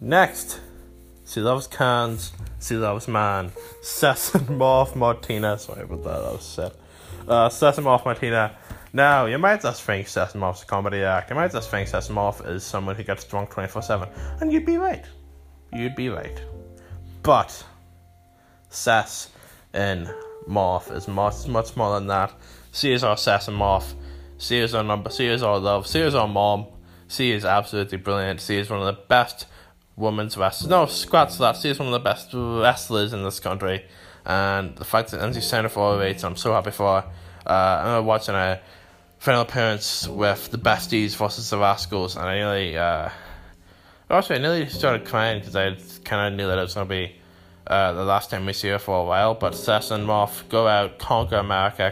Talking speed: 195 wpm